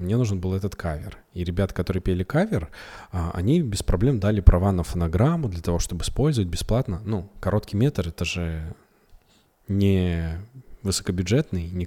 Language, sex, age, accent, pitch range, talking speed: Russian, male, 20-39, native, 85-105 Hz, 155 wpm